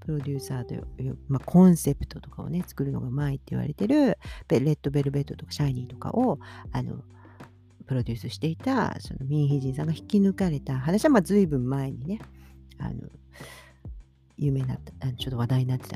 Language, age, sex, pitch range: Japanese, 50-69, female, 125-195 Hz